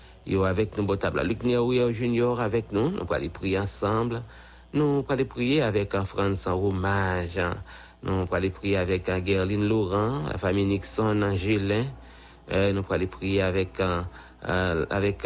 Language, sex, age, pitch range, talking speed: English, male, 60-79, 95-105 Hz, 155 wpm